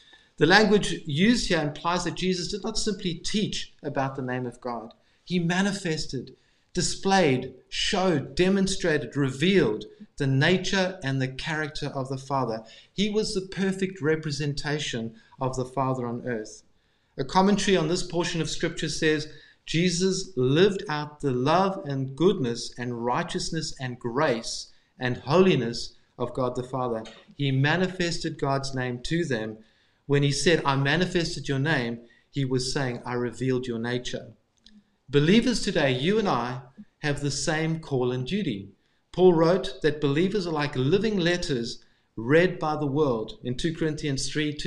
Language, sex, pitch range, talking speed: English, male, 130-175 Hz, 150 wpm